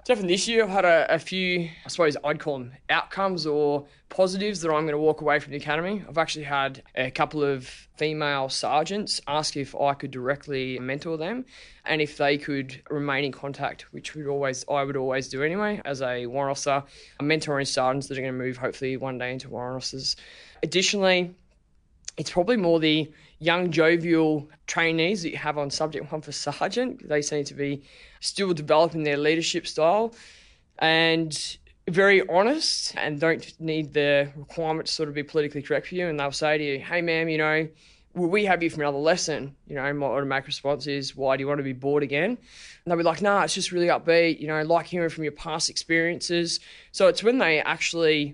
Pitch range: 140-165 Hz